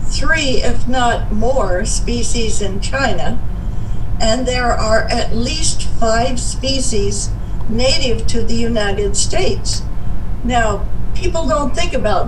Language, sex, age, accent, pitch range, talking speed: English, female, 60-79, American, 105-135 Hz, 115 wpm